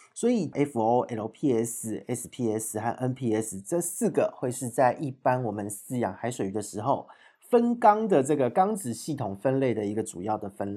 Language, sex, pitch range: Chinese, male, 105-140 Hz